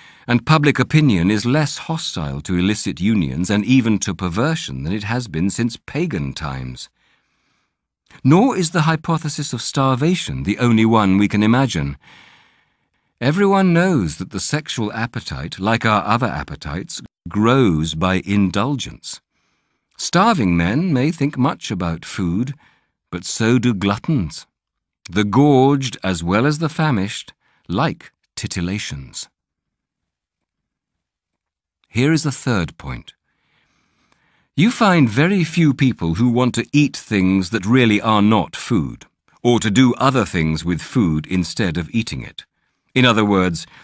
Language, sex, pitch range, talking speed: English, male, 95-135 Hz, 135 wpm